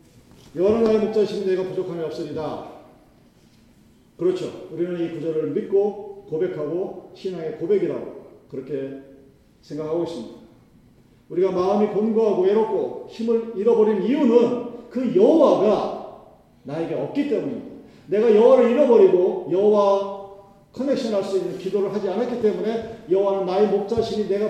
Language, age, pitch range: Korean, 40-59, 175-235 Hz